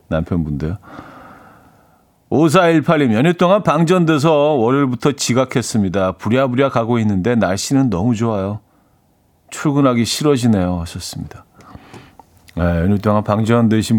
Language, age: Korean, 40-59